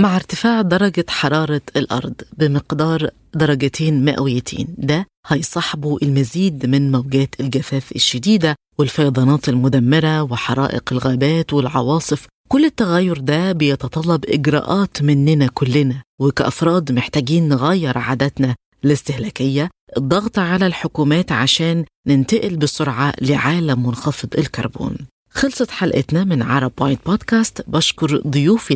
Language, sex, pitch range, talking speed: Arabic, female, 135-170 Hz, 100 wpm